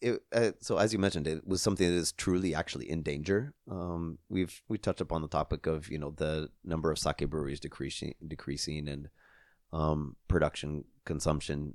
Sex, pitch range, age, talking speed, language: male, 75-90 Hz, 30-49, 180 wpm, English